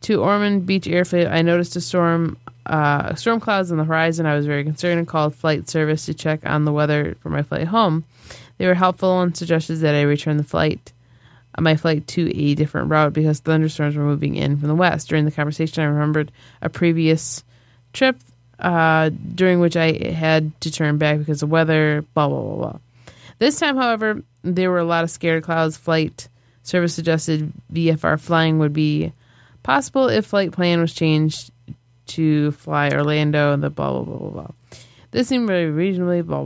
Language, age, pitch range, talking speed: English, 20-39, 145-175 Hz, 195 wpm